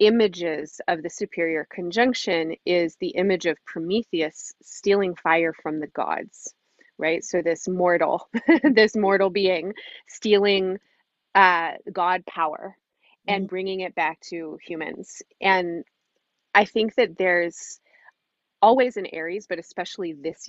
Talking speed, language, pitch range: 125 wpm, English, 165-215 Hz